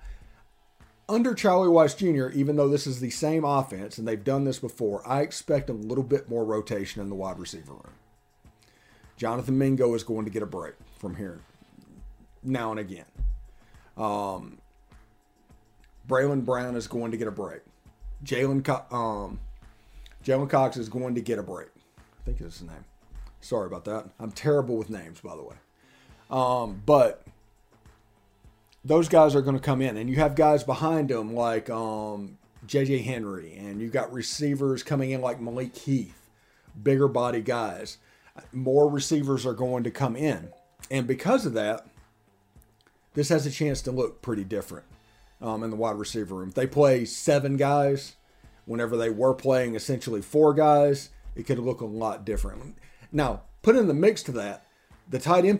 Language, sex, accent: English, male, American